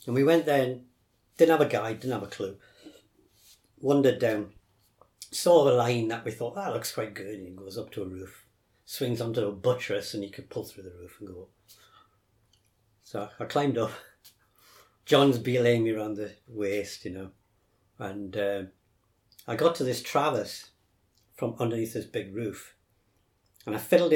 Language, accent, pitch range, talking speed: English, British, 105-150 Hz, 185 wpm